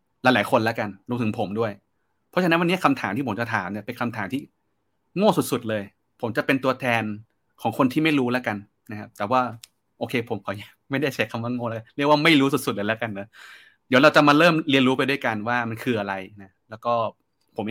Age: 30-49